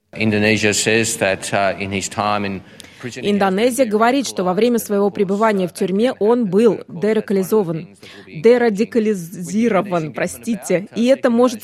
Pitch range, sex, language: 180-235 Hz, female, Russian